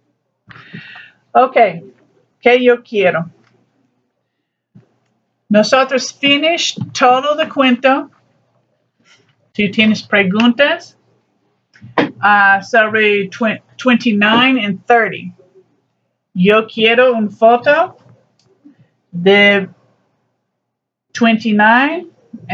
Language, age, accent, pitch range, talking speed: English, 50-69, American, 195-245 Hz, 65 wpm